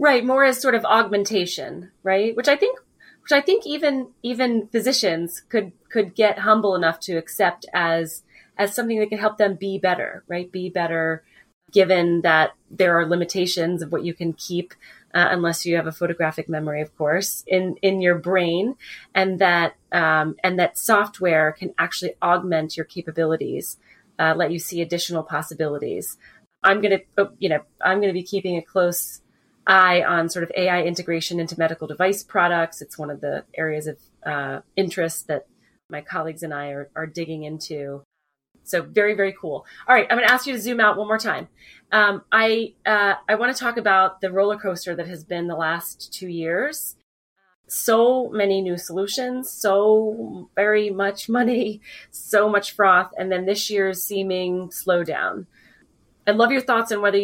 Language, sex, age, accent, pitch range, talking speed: English, female, 30-49, American, 170-210 Hz, 180 wpm